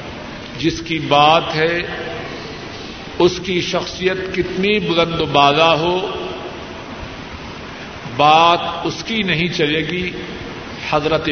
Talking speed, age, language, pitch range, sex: 95 wpm, 50-69, Urdu, 150-185 Hz, male